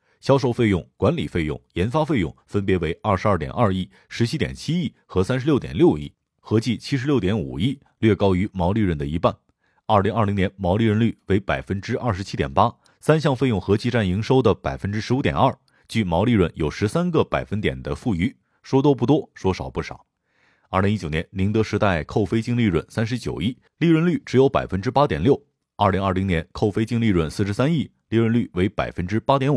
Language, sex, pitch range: Chinese, male, 90-120 Hz